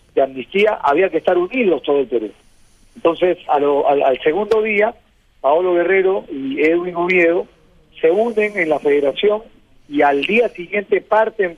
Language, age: Spanish, 50-69